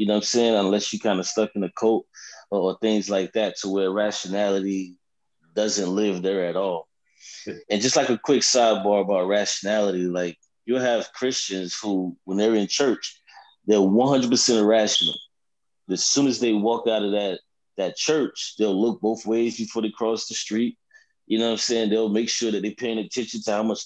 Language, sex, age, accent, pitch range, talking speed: English, male, 20-39, American, 100-120 Hz, 200 wpm